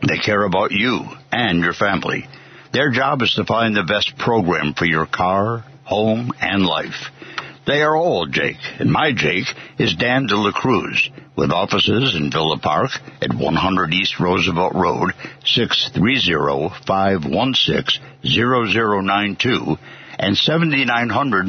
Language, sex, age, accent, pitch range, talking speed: English, male, 60-79, American, 95-120 Hz, 130 wpm